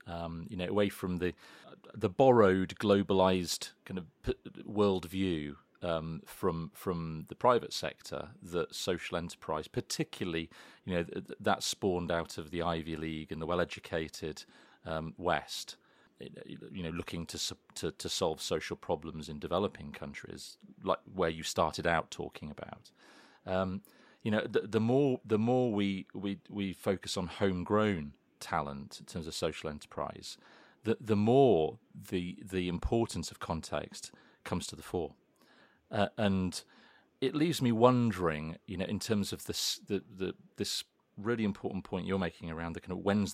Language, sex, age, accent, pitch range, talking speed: English, male, 40-59, British, 85-105 Hz, 160 wpm